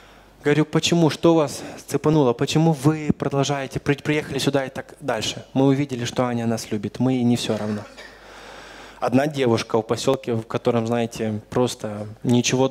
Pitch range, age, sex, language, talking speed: 125-160 Hz, 20-39, male, Romanian, 155 wpm